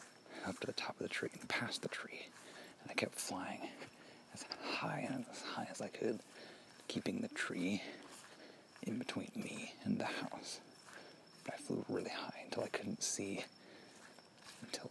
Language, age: English, 40-59